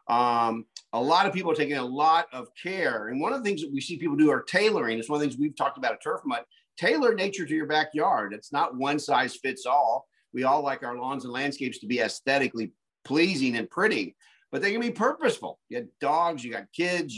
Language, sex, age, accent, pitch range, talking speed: English, male, 50-69, American, 140-230 Hz, 240 wpm